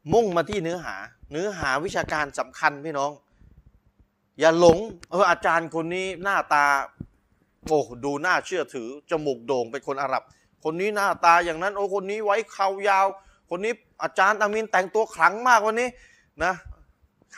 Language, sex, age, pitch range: Thai, male, 20-39, 150-200 Hz